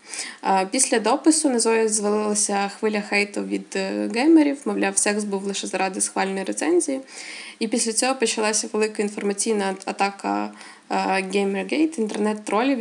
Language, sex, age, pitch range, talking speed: Ukrainian, female, 20-39, 205-240 Hz, 115 wpm